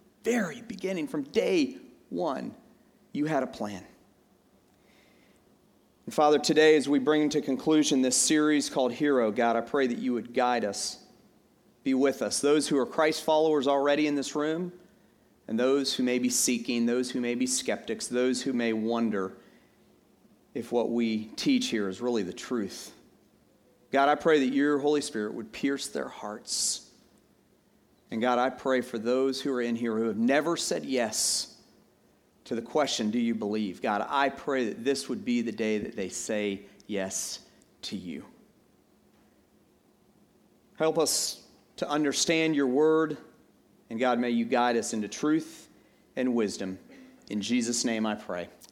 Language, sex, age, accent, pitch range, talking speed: English, male, 40-59, American, 115-155 Hz, 165 wpm